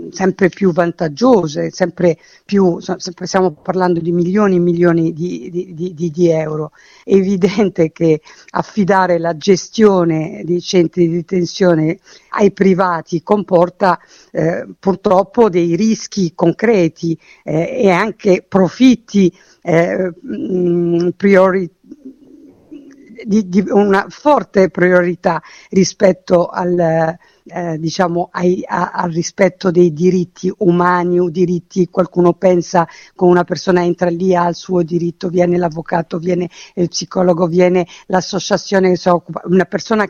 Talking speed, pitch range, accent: 120 wpm, 175-190 Hz, native